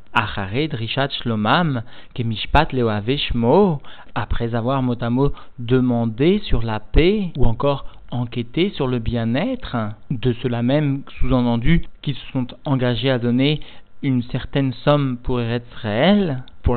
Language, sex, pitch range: French, male, 120-140 Hz